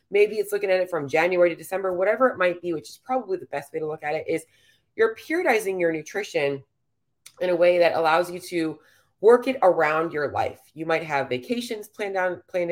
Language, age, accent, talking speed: English, 30-49, American, 220 wpm